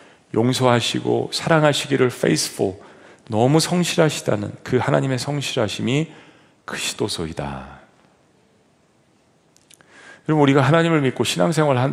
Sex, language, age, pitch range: male, Korean, 40-59, 105-165 Hz